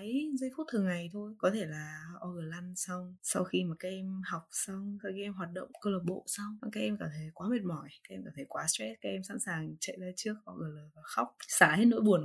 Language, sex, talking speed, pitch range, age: Vietnamese, female, 270 wpm, 175-225 Hz, 10-29